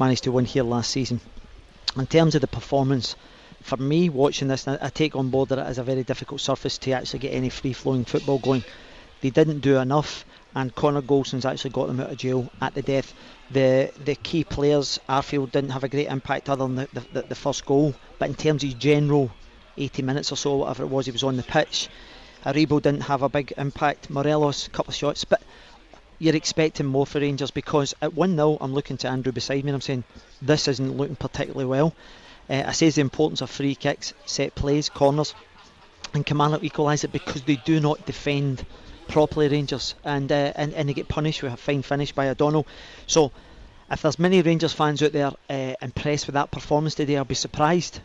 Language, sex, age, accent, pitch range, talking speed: English, male, 40-59, British, 135-150 Hz, 210 wpm